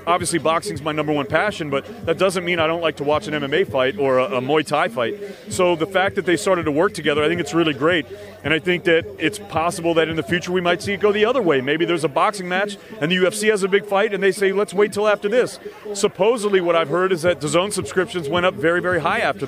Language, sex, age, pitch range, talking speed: English, male, 30-49, 155-195 Hz, 280 wpm